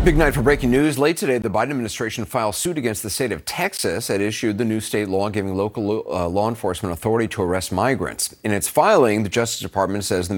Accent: American